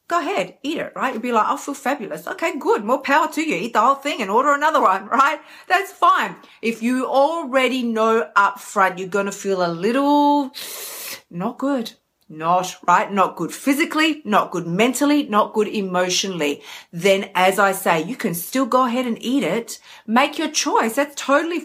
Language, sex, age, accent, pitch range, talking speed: English, female, 40-59, Australian, 195-275 Hz, 195 wpm